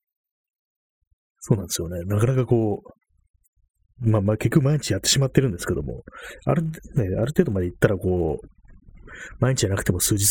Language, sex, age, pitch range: Japanese, male, 30-49, 95-130 Hz